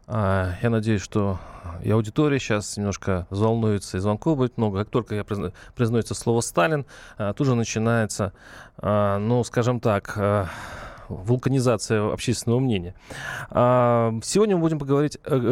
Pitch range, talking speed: 105-140 Hz, 125 wpm